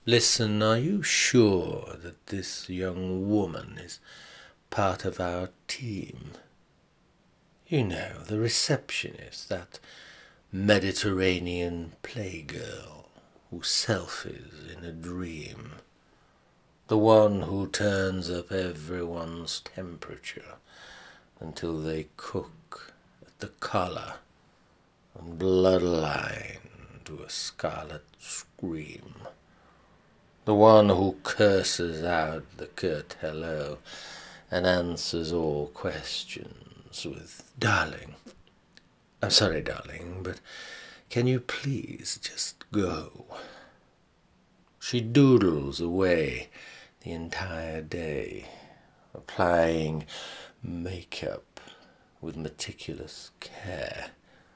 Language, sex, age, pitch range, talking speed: English, male, 60-79, 80-100 Hz, 85 wpm